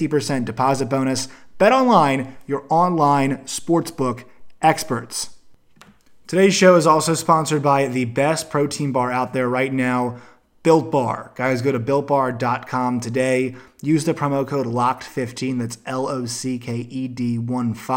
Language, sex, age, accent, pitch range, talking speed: English, male, 30-49, American, 125-145 Hz, 125 wpm